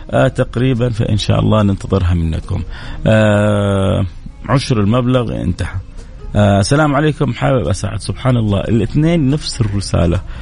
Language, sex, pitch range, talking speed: Arabic, male, 95-130 Hz, 120 wpm